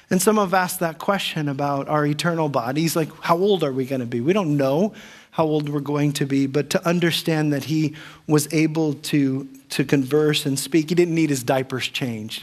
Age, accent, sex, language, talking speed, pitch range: 40-59, American, male, English, 215 wpm, 145-175 Hz